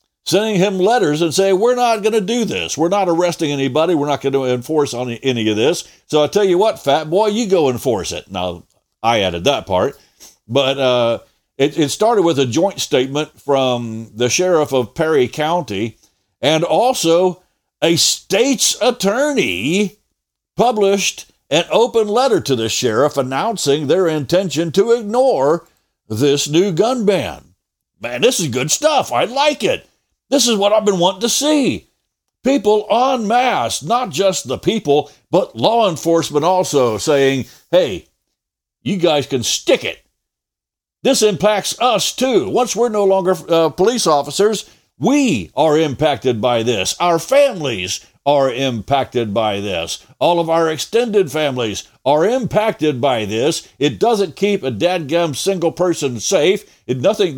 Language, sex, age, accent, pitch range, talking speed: English, male, 60-79, American, 135-210 Hz, 155 wpm